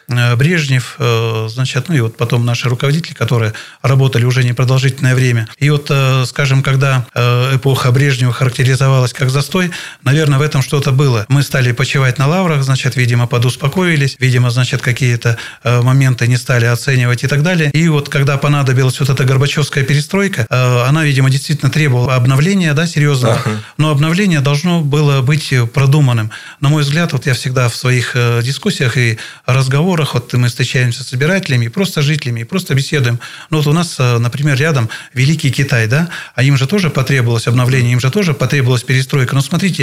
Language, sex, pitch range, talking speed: Russian, male, 125-150 Hz, 165 wpm